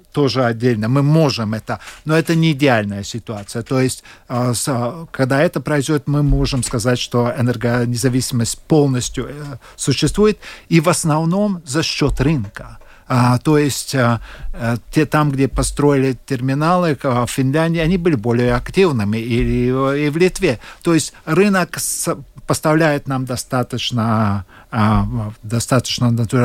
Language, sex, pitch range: Russian, male, 120-155 Hz